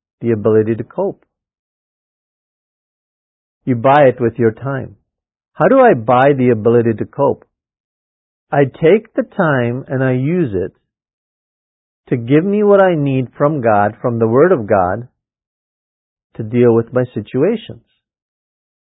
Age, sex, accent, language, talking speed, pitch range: 50-69, male, American, English, 140 wpm, 115-165 Hz